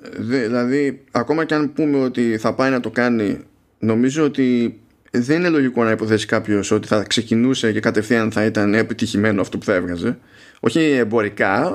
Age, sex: 20-39, male